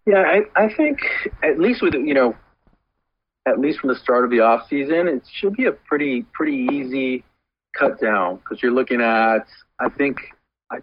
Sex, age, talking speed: male, 40-59, 190 wpm